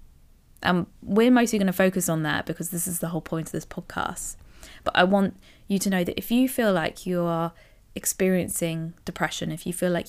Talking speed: 215 wpm